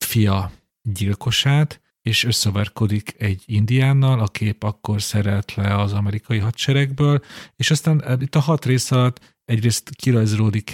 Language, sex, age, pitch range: Hungarian, male, 40-59, 105-125 Hz